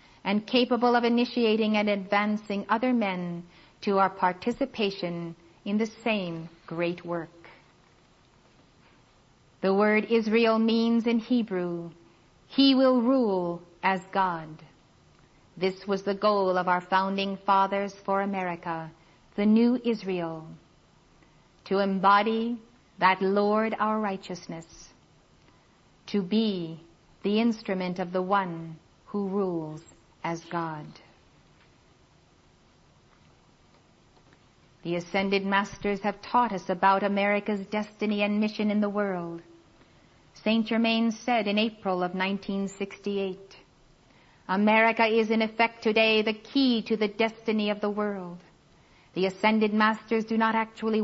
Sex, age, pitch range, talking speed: female, 50-69, 185-220 Hz, 115 wpm